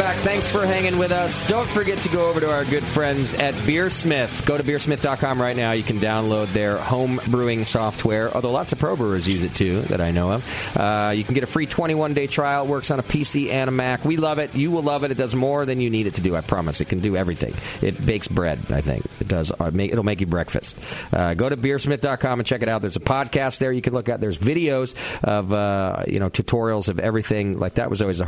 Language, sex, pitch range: English, male, 95-140 Hz